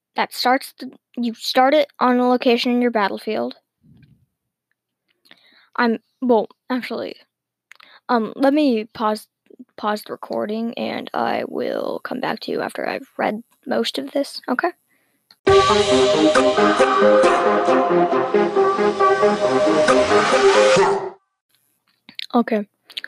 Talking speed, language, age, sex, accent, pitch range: 95 wpm, English, 10-29, female, American, 220-260 Hz